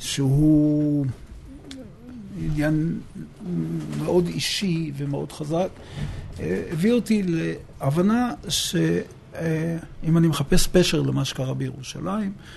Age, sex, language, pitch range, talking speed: 60-79, male, Hebrew, 135-170 Hz, 75 wpm